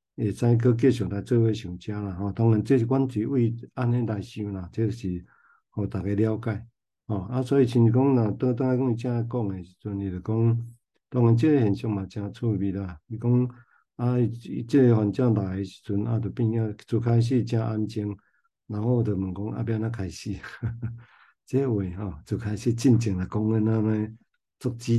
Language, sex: Chinese, male